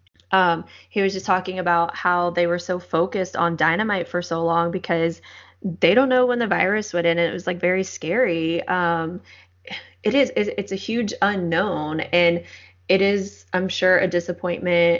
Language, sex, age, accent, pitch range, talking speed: English, female, 20-39, American, 170-190 Hz, 180 wpm